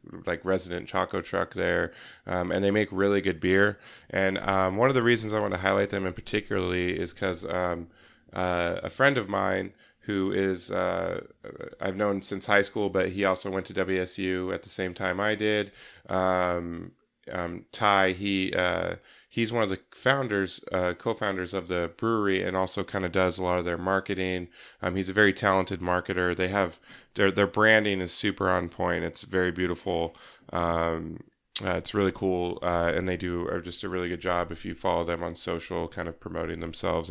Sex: male